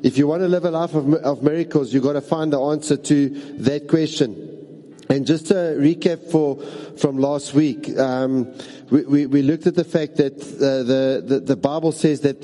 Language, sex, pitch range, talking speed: English, male, 135-160 Hz, 205 wpm